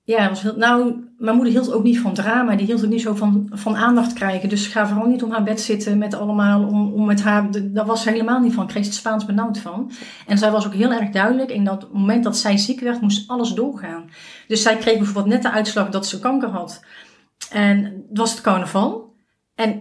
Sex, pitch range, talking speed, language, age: female, 205-235 Hz, 240 wpm, Dutch, 40-59